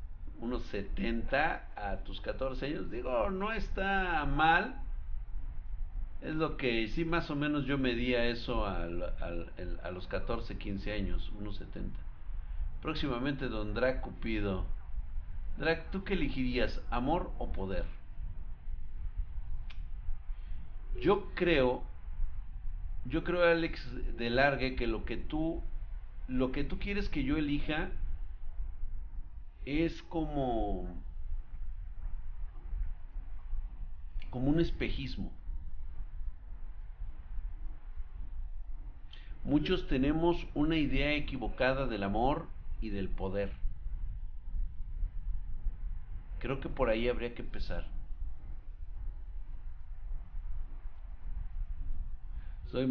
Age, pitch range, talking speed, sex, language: 50-69, 80-130 Hz, 95 wpm, male, Spanish